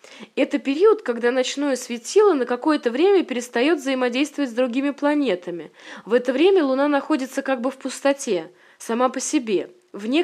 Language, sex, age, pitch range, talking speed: Russian, female, 20-39, 235-290 Hz, 150 wpm